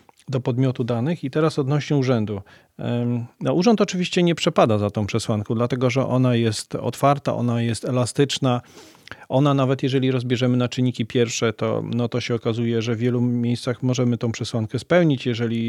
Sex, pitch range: male, 120-140 Hz